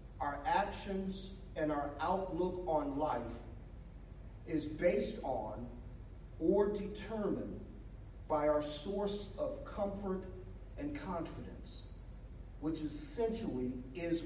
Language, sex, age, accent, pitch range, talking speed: English, male, 40-59, American, 125-185 Hz, 95 wpm